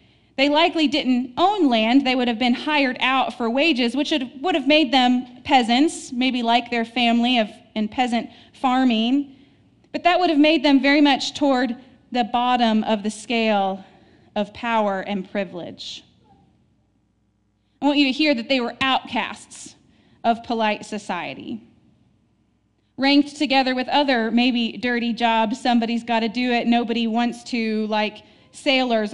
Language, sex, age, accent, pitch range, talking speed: English, female, 30-49, American, 220-285 Hz, 150 wpm